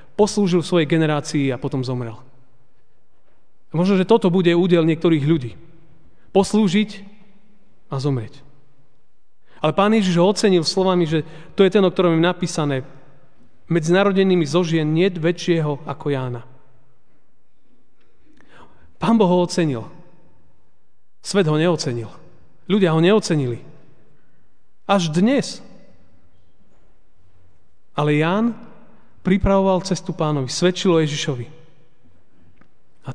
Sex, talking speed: male, 100 wpm